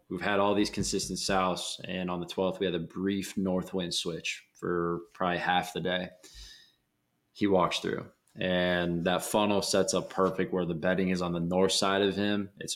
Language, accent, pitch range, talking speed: English, American, 85-100 Hz, 200 wpm